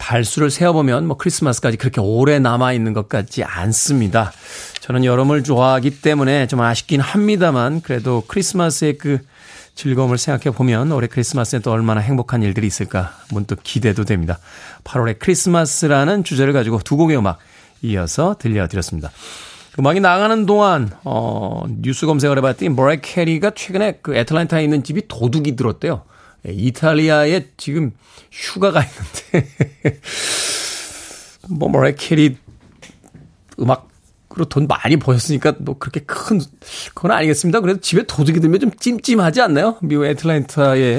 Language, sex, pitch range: Korean, male, 120-160 Hz